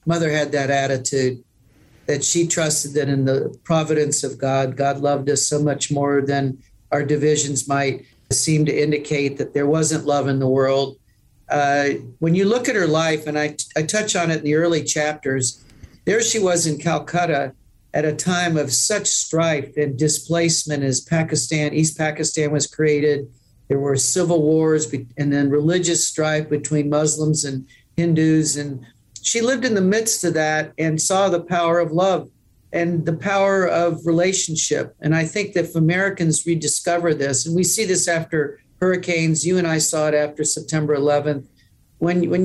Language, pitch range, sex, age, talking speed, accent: English, 140-170 Hz, male, 50-69, 175 wpm, American